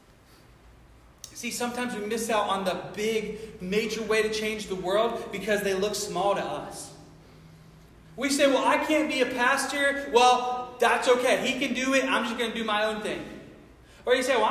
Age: 30-49